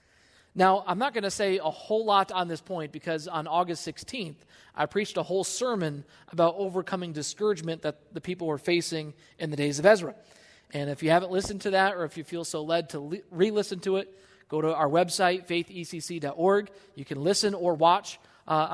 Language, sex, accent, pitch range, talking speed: English, male, American, 165-210 Hz, 200 wpm